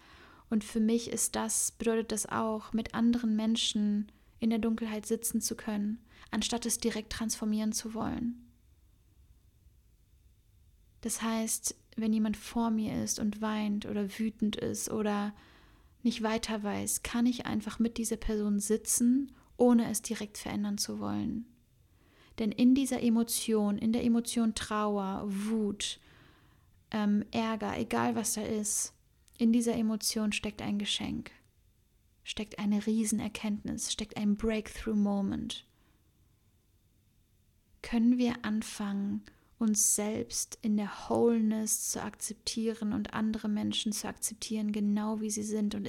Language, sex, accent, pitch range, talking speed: German, female, German, 205-230 Hz, 130 wpm